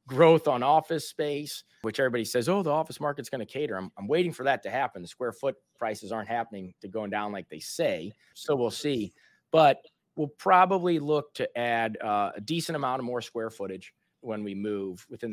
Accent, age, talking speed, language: American, 30-49, 210 wpm, English